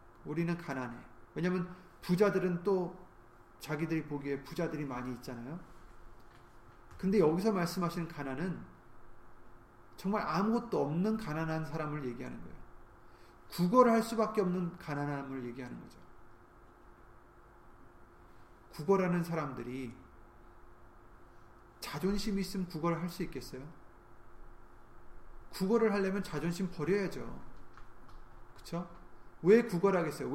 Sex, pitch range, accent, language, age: male, 120-190 Hz, native, Korean, 30-49